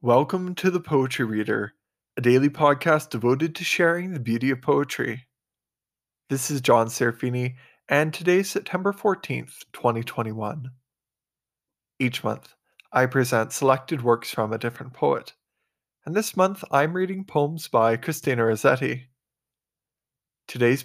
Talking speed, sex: 130 wpm, male